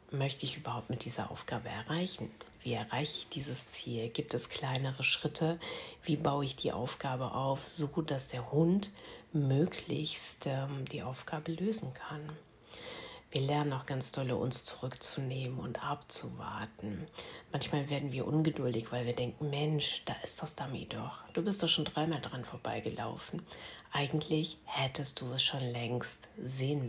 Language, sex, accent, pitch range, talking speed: German, female, German, 130-155 Hz, 150 wpm